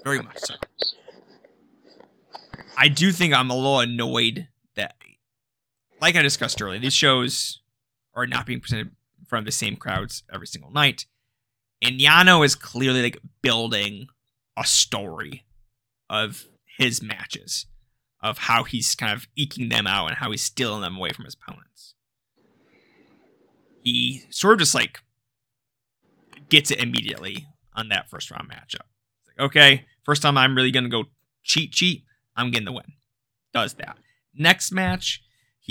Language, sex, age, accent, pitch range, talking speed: English, male, 20-39, American, 120-140 Hz, 150 wpm